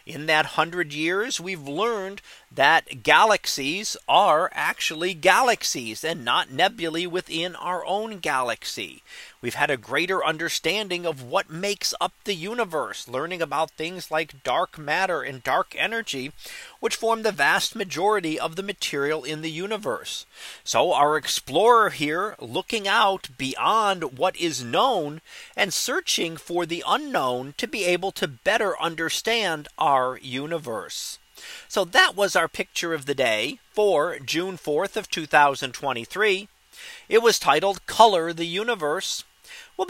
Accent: American